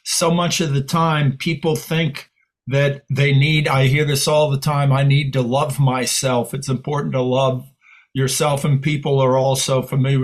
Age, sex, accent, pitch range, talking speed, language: 50-69, male, American, 130-155 Hz, 180 wpm, English